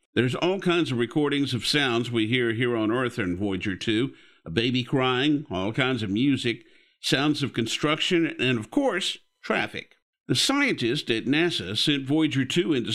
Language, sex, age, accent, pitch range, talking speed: English, male, 50-69, American, 120-160 Hz, 170 wpm